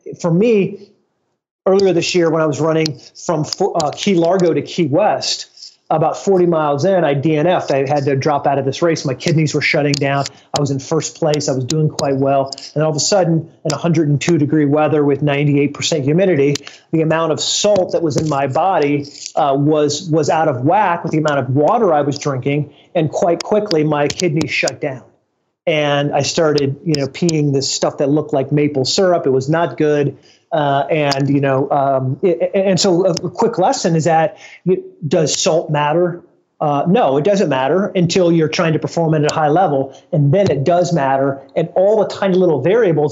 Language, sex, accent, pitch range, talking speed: English, male, American, 145-180 Hz, 200 wpm